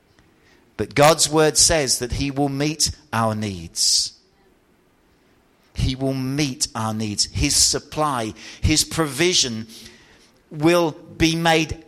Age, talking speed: 50-69, 110 wpm